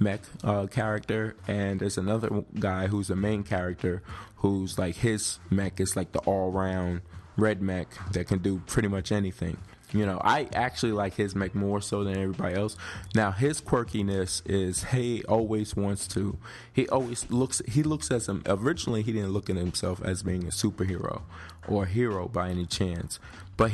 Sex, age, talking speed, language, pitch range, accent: male, 20-39, 180 wpm, English, 95-110 Hz, American